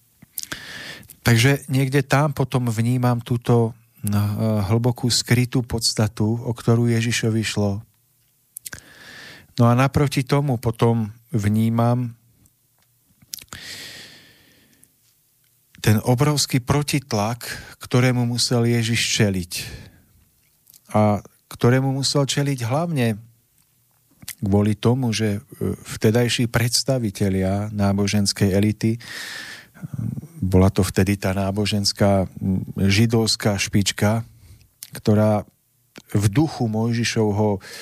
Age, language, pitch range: 40-59, Slovak, 110-130 Hz